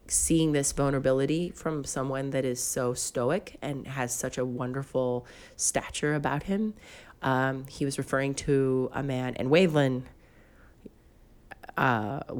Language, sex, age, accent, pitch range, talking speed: English, female, 30-49, American, 125-155 Hz, 130 wpm